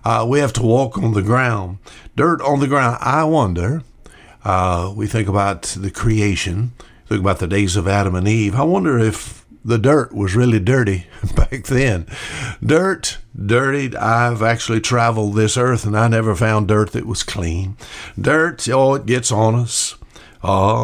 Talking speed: 175 wpm